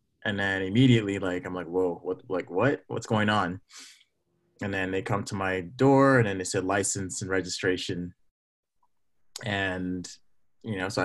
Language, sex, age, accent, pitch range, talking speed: English, male, 20-39, American, 90-120 Hz, 175 wpm